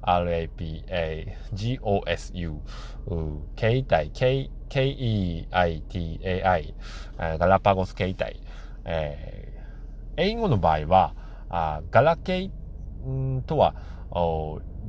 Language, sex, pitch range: Japanese, male, 75-105 Hz